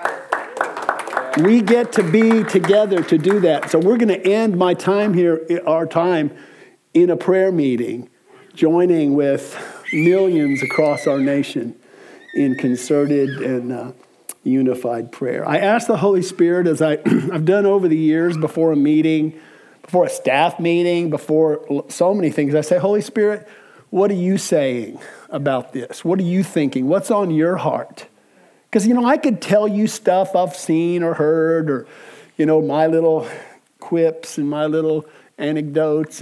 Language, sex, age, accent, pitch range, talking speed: English, male, 50-69, American, 145-185 Hz, 160 wpm